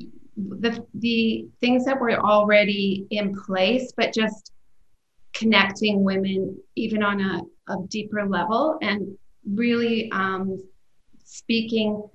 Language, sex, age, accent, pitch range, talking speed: English, female, 30-49, American, 190-215 Hz, 110 wpm